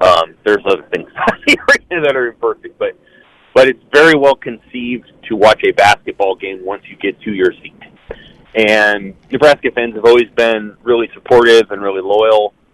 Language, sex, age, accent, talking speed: English, male, 30-49, American, 165 wpm